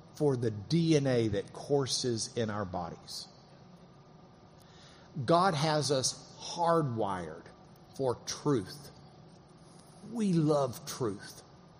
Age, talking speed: 50-69, 85 wpm